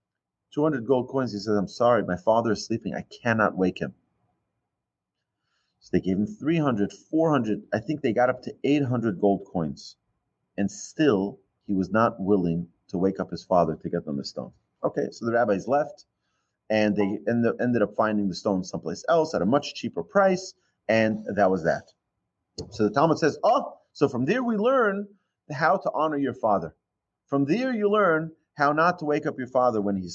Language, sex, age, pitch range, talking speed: English, male, 30-49, 105-155 Hz, 195 wpm